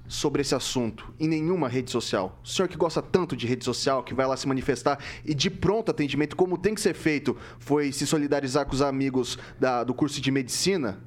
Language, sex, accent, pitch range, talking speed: Portuguese, male, Brazilian, 130-165 Hz, 215 wpm